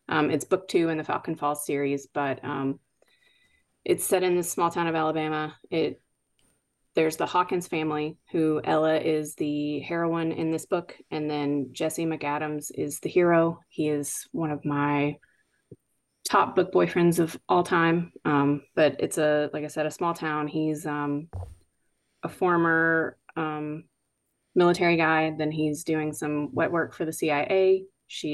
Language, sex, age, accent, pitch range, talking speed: English, female, 30-49, American, 150-170 Hz, 165 wpm